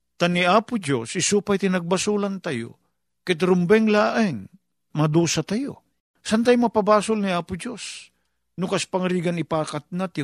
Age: 50-69